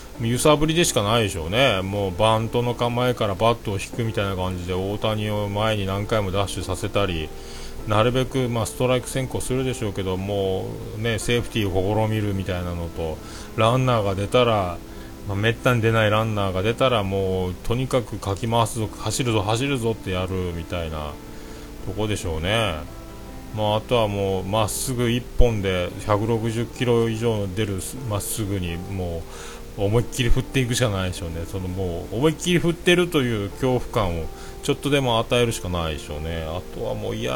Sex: male